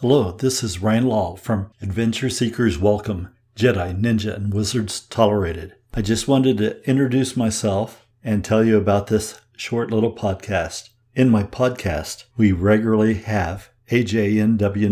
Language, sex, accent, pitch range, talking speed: English, male, American, 105-120 Hz, 140 wpm